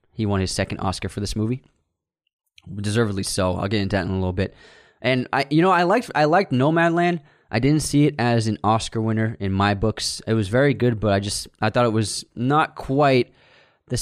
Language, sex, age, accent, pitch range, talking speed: English, male, 20-39, American, 95-125 Hz, 225 wpm